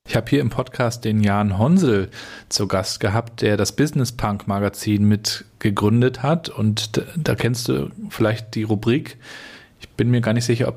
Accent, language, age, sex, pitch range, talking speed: German, German, 40-59, male, 110-130 Hz, 190 wpm